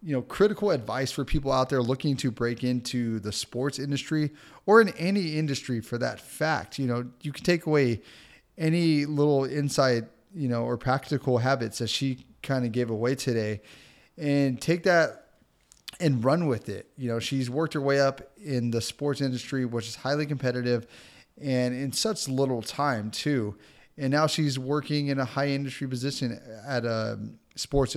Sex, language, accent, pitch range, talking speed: male, English, American, 125-155 Hz, 180 wpm